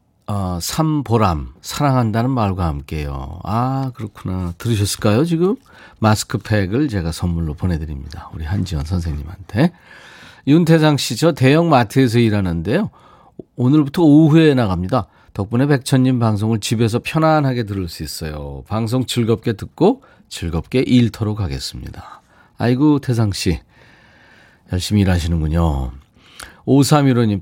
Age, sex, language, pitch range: 40-59, male, Korean, 90-135 Hz